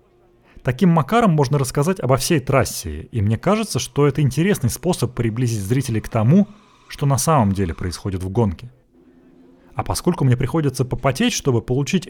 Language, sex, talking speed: Russian, male, 160 wpm